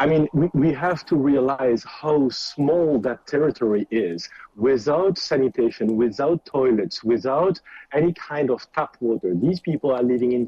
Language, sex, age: English, male, 50-69